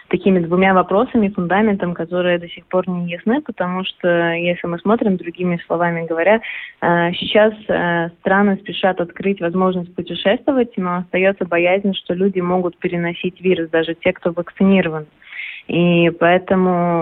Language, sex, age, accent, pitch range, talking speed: Russian, female, 20-39, native, 180-200 Hz, 135 wpm